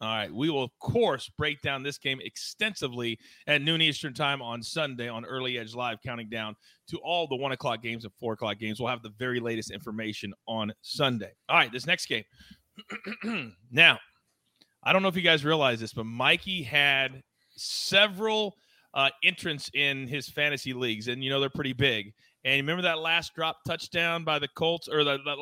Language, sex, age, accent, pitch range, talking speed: English, male, 30-49, American, 130-175 Hz, 195 wpm